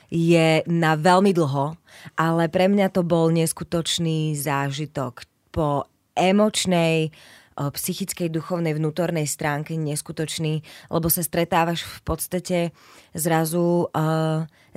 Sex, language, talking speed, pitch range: female, Slovak, 100 wpm, 155-185 Hz